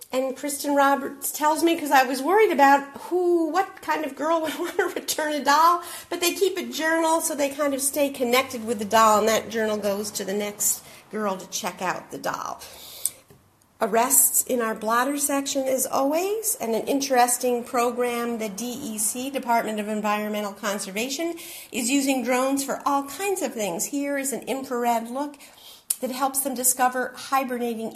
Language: English